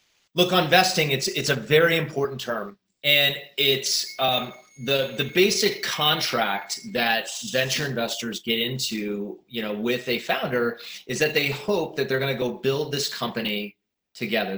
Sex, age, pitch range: male, 30-49, 120-155 Hz